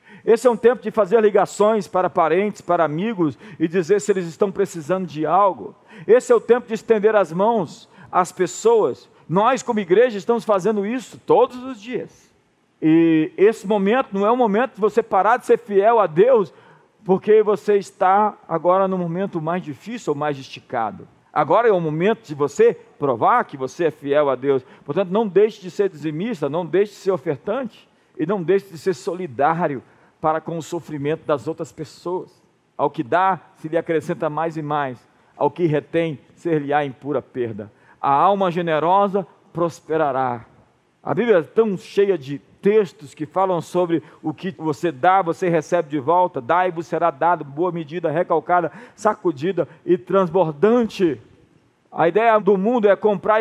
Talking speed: 175 wpm